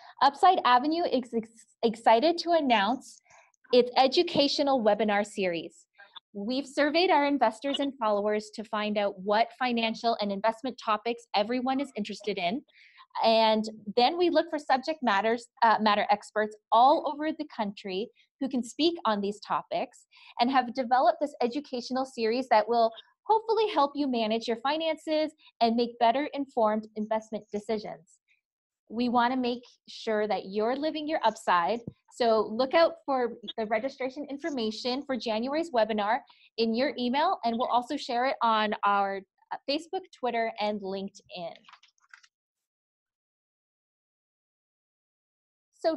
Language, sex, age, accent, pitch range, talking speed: English, female, 20-39, American, 215-280 Hz, 130 wpm